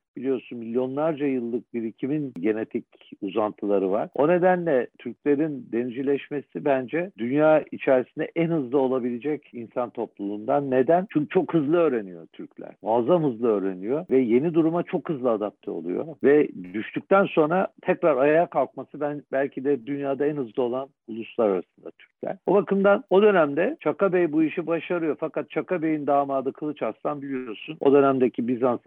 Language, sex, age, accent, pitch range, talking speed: Turkish, male, 60-79, native, 110-150 Hz, 145 wpm